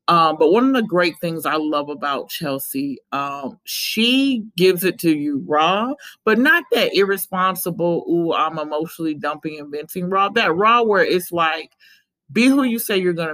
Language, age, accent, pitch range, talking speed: English, 40-59, American, 160-205 Hz, 180 wpm